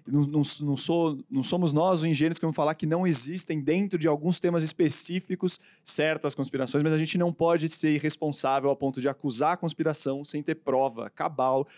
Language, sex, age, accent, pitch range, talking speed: English, male, 20-39, Brazilian, 130-165 Hz, 185 wpm